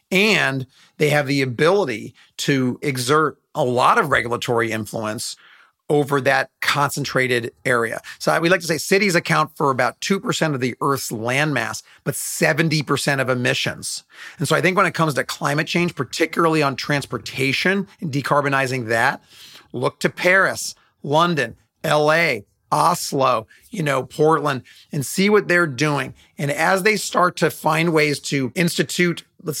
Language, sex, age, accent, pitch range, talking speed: English, male, 40-59, American, 130-160 Hz, 150 wpm